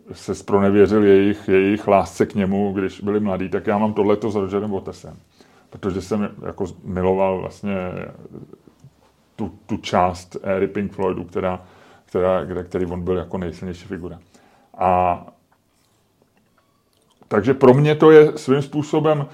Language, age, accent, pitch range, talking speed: Czech, 30-49, native, 100-140 Hz, 135 wpm